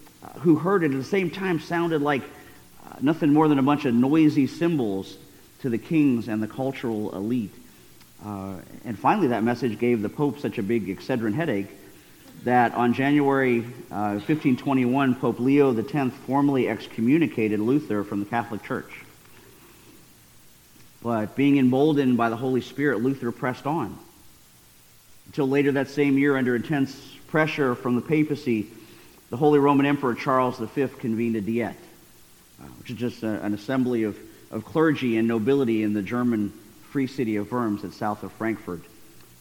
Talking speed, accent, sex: 160 wpm, American, male